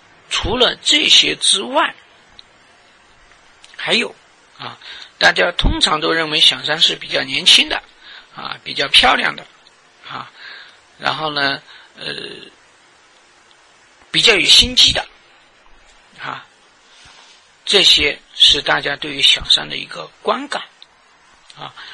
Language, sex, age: Chinese, male, 50-69